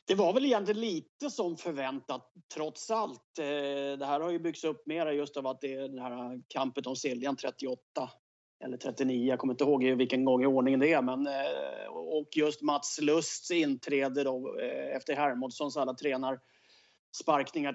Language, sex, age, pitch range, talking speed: English, male, 30-49, 130-180 Hz, 170 wpm